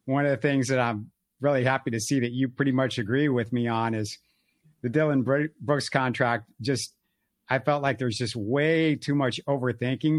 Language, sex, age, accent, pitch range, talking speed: English, male, 50-69, American, 130-155 Hz, 195 wpm